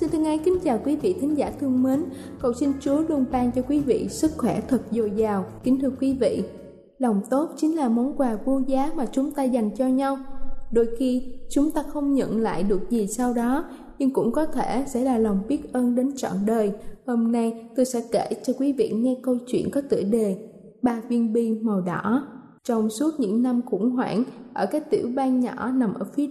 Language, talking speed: Vietnamese, 220 wpm